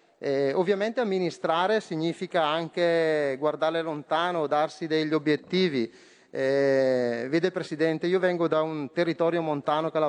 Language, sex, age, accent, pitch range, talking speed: Italian, male, 30-49, native, 155-210 Hz, 130 wpm